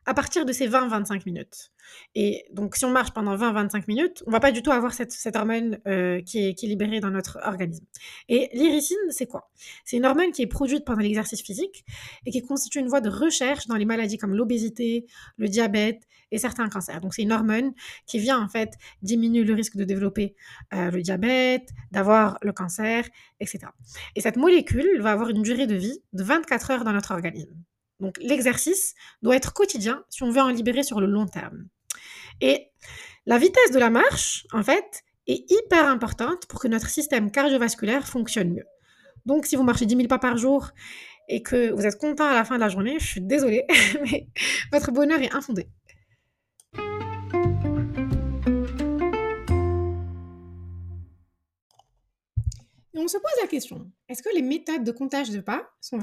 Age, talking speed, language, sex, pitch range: 20-39, 185 wpm, French, female, 200-270 Hz